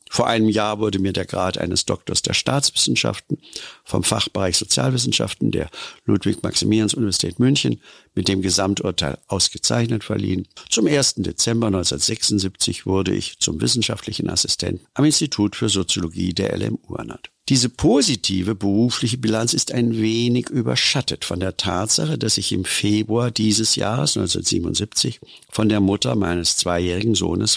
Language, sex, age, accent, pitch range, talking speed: German, male, 60-79, German, 95-115 Hz, 135 wpm